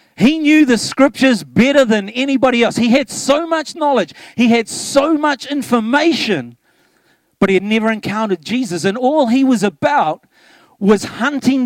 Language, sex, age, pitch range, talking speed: English, male, 40-59, 200-275 Hz, 160 wpm